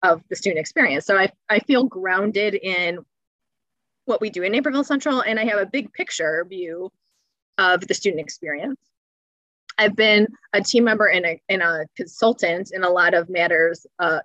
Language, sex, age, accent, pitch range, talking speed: English, female, 20-39, American, 170-215 Hz, 175 wpm